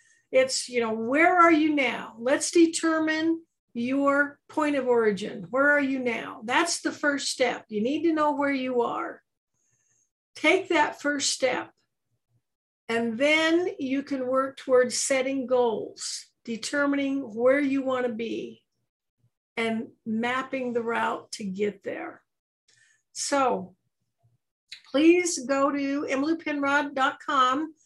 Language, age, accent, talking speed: English, 60-79, American, 125 wpm